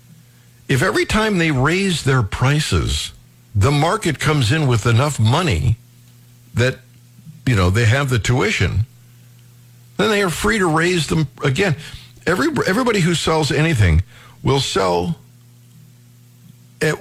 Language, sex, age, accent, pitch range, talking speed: English, male, 60-79, American, 120-150 Hz, 125 wpm